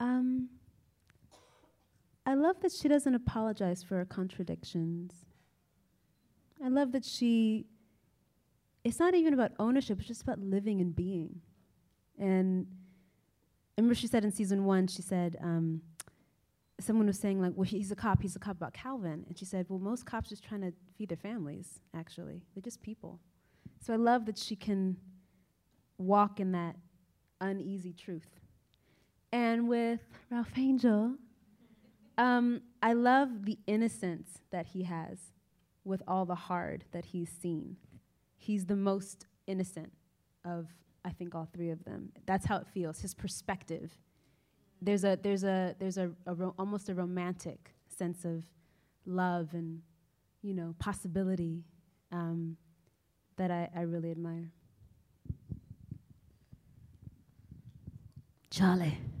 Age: 30-49